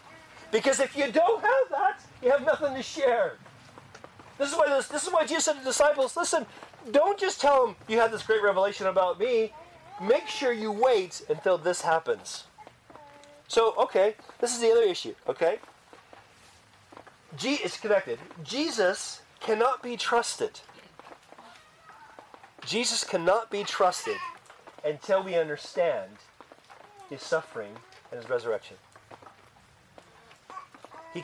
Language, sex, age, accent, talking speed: English, male, 30-49, American, 135 wpm